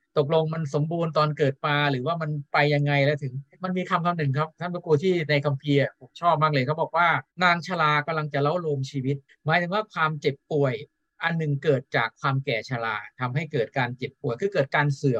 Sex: male